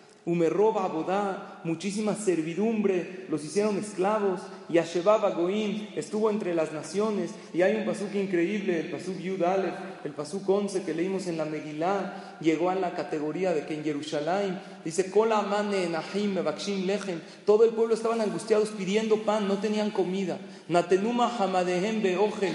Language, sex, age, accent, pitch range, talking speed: Spanish, male, 40-59, Mexican, 175-210 Hz, 135 wpm